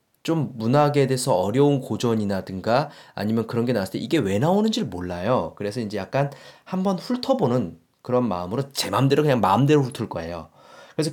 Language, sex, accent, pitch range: Korean, male, native, 110-170 Hz